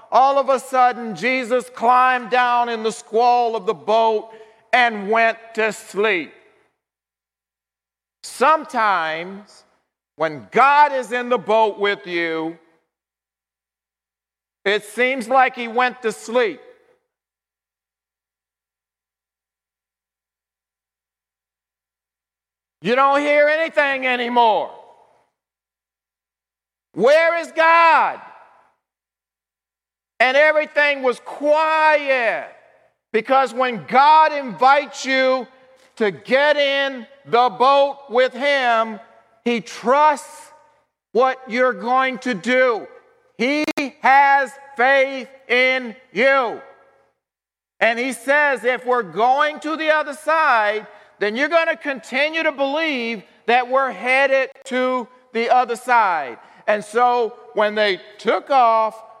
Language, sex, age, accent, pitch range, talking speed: English, male, 50-69, American, 170-270 Hz, 100 wpm